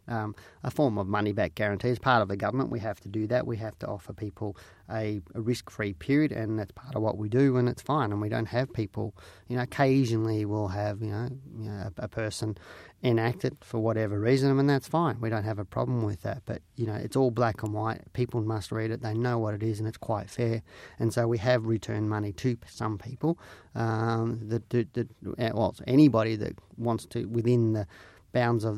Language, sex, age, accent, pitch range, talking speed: English, male, 30-49, Australian, 105-120 Hz, 230 wpm